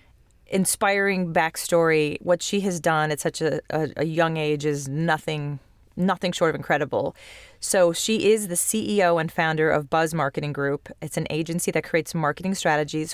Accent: American